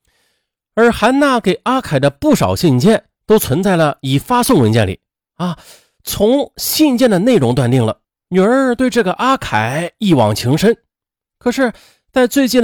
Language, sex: Chinese, male